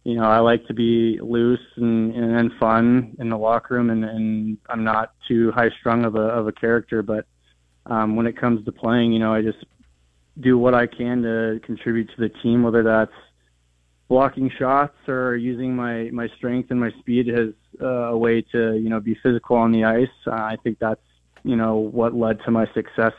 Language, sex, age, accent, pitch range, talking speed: English, male, 20-39, American, 110-125 Hz, 205 wpm